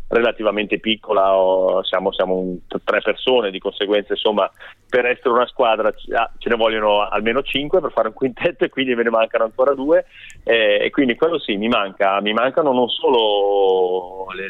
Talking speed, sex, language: 175 wpm, male, Italian